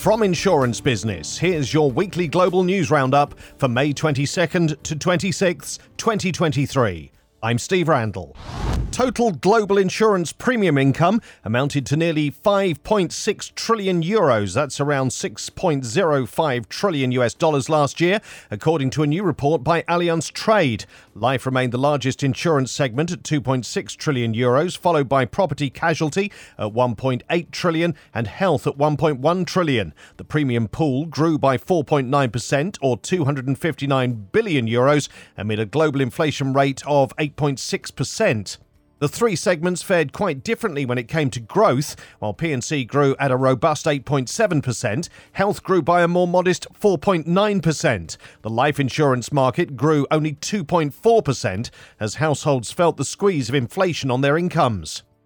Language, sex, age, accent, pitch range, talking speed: English, male, 40-59, British, 130-175 Hz, 140 wpm